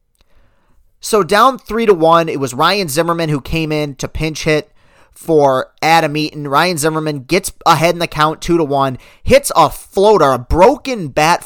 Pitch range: 145-175 Hz